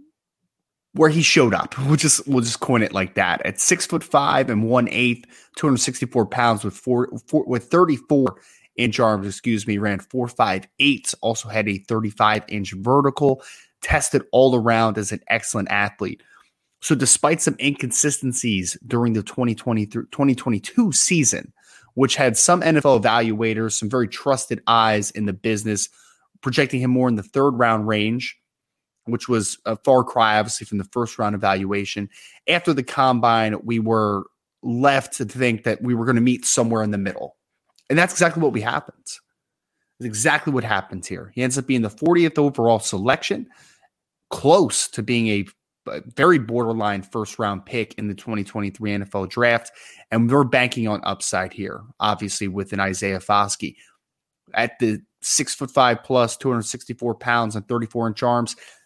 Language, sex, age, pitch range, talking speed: English, male, 20-39, 105-130 Hz, 160 wpm